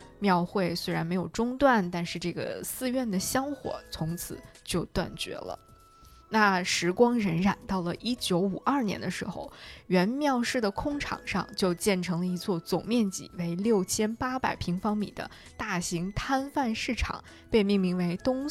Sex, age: female, 20-39